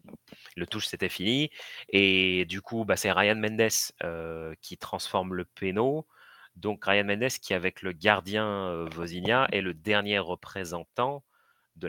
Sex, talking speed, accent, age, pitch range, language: male, 150 wpm, French, 30-49, 85-105 Hz, French